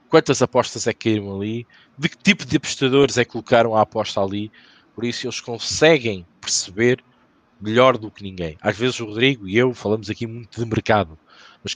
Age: 20-39